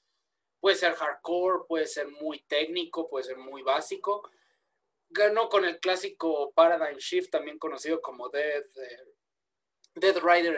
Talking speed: 130 wpm